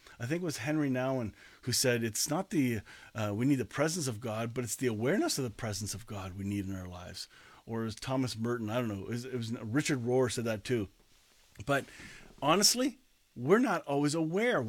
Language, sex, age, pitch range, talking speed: English, male, 40-59, 120-180 Hz, 225 wpm